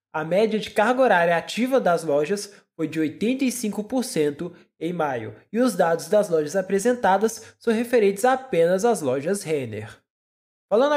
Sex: male